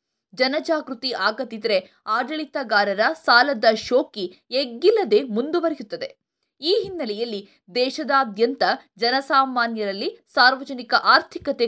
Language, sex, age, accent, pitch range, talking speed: Kannada, female, 20-39, native, 230-315 Hz, 65 wpm